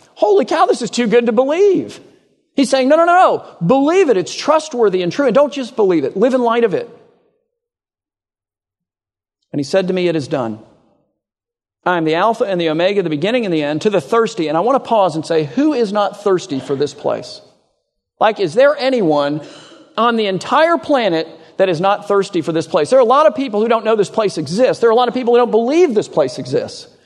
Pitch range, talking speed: 145-240 Hz, 235 wpm